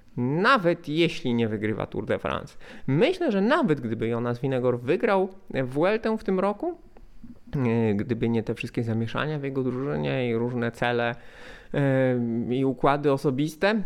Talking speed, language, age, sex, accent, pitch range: 140 wpm, Polish, 20-39, male, native, 120-165 Hz